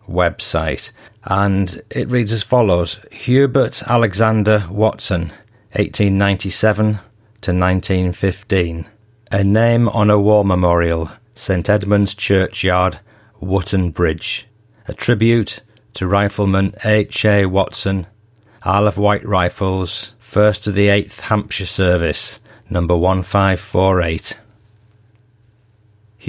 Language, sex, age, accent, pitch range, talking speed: English, male, 40-59, British, 95-110 Hz, 95 wpm